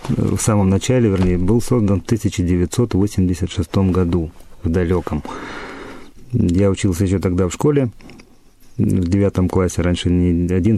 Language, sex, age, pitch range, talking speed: Russian, male, 30-49, 90-110 Hz, 130 wpm